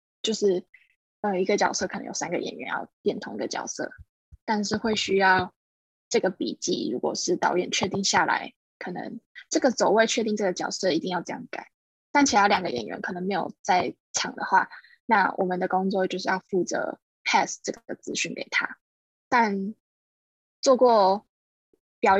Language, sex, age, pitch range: Chinese, female, 10-29, 190-240 Hz